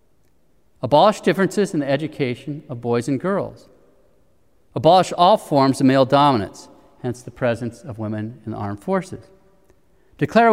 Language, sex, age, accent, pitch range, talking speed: English, male, 40-59, American, 125-160 Hz, 140 wpm